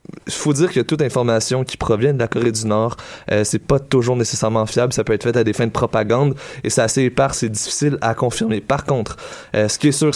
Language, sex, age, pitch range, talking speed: French, male, 20-39, 115-140 Hz, 255 wpm